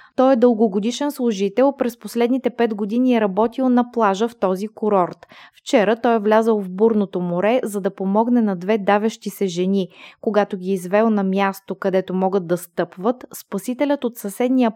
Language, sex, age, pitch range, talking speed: Bulgarian, female, 20-39, 195-240 Hz, 170 wpm